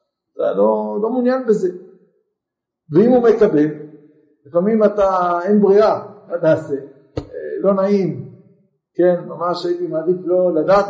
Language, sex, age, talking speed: Hebrew, male, 50-69, 120 wpm